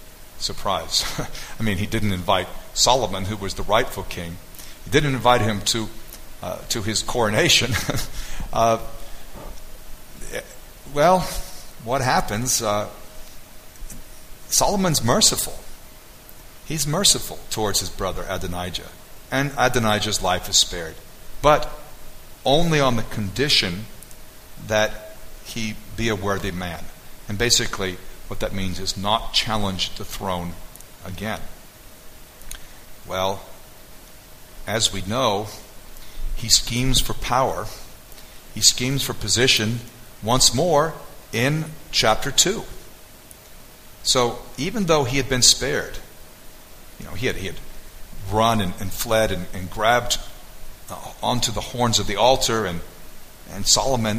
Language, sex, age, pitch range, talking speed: English, male, 50-69, 95-125 Hz, 120 wpm